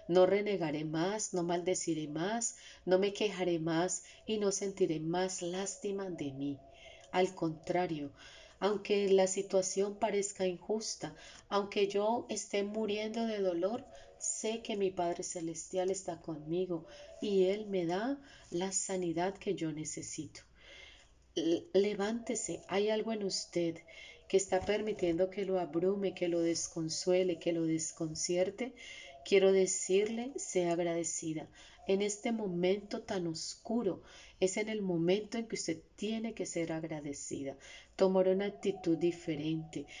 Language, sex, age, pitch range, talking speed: Spanish, female, 30-49, 175-210 Hz, 130 wpm